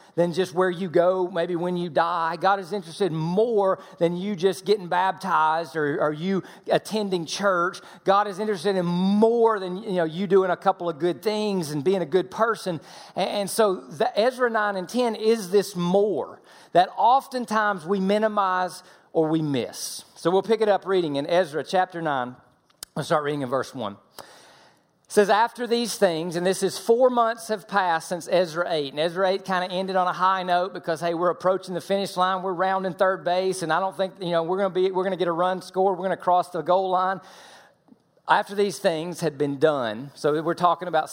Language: English